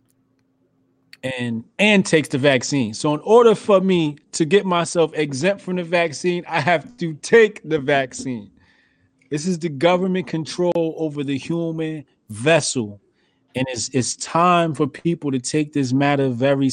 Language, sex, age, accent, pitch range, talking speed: English, male, 30-49, American, 120-150 Hz, 155 wpm